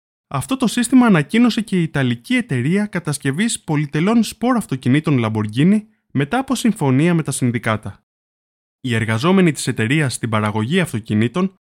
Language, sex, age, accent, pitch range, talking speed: Greek, male, 20-39, native, 125-200 Hz, 135 wpm